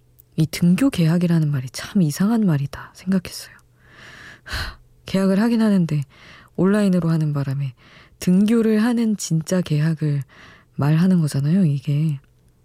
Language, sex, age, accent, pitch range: Korean, female, 20-39, native, 135-180 Hz